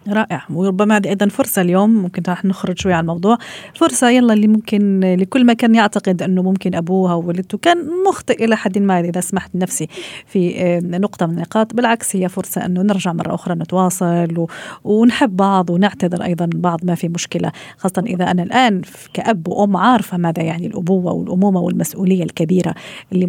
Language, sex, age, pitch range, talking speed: Arabic, female, 40-59, 175-210 Hz, 170 wpm